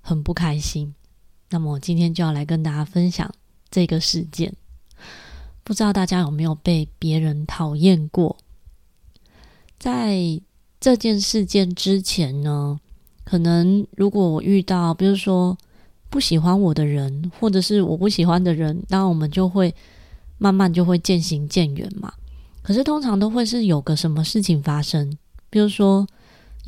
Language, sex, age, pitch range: Chinese, female, 20-39, 160-195 Hz